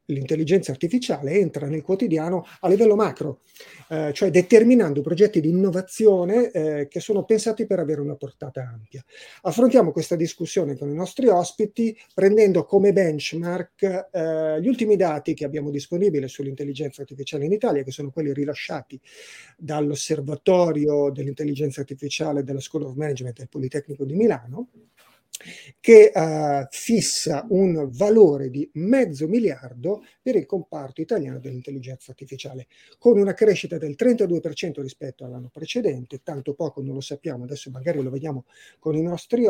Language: Italian